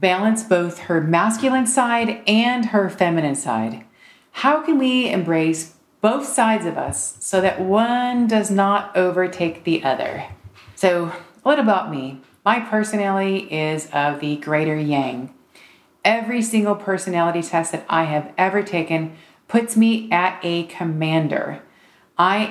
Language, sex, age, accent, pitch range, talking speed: English, female, 40-59, American, 165-210 Hz, 135 wpm